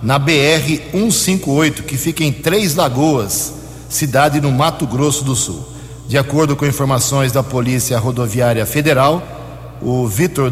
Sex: male